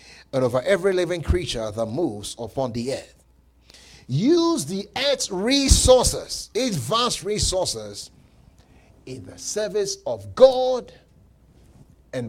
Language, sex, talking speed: English, male, 110 wpm